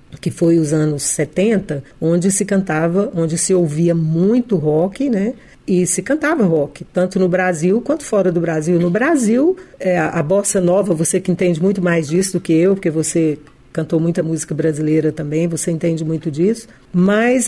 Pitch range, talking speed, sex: 170-215 Hz, 180 wpm, female